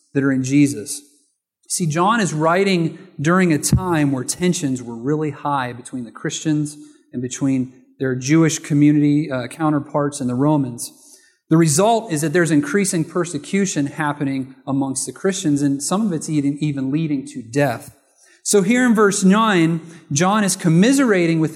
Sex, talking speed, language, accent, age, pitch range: male, 160 wpm, English, American, 30-49, 140-185 Hz